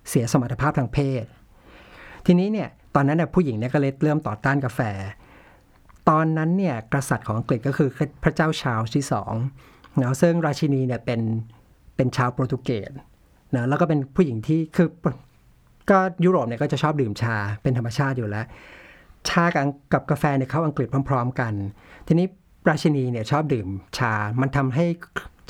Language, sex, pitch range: Thai, male, 115-150 Hz